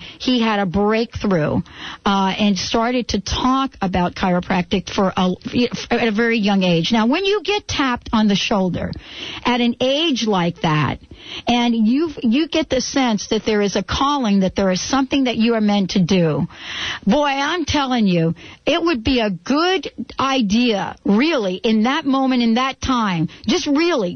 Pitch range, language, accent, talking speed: 200-260 Hz, English, American, 175 wpm